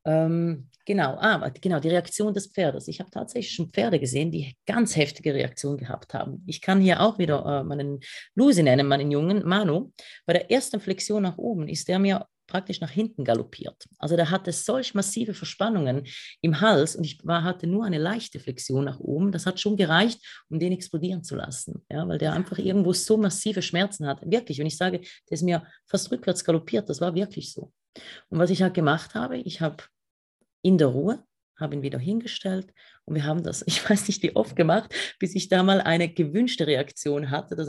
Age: 30-49